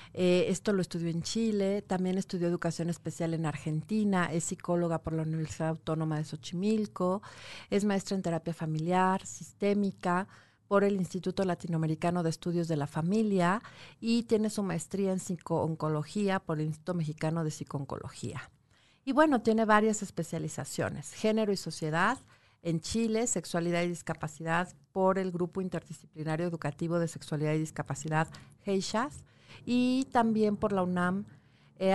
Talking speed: 145 wpm